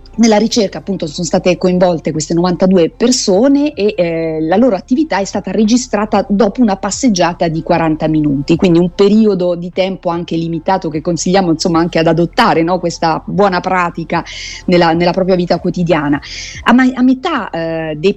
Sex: female